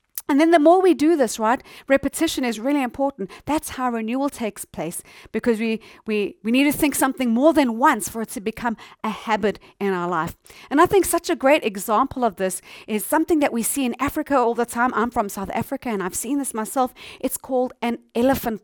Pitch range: 220-290 Hz